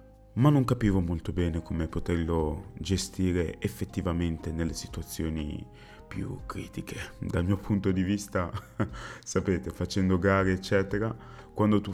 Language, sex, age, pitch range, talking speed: Italian, male, 30-49, 85-105 Hz, 120 wpm